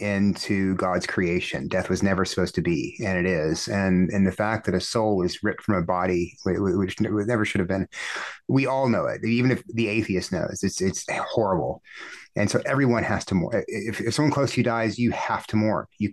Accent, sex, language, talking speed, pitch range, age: American, male, English, 220 wpm, 100-120 Hz, 30-49